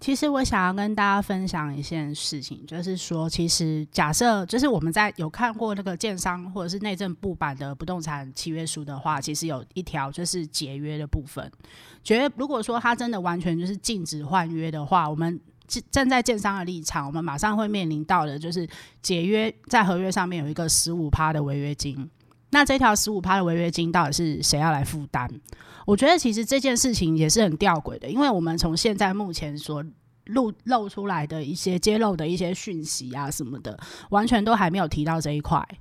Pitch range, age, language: 155-215 Hz, 20-39, Chinese